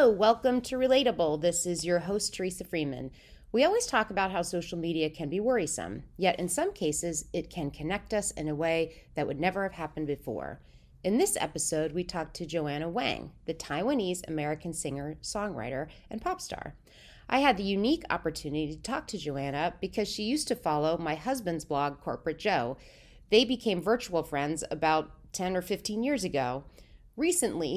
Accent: American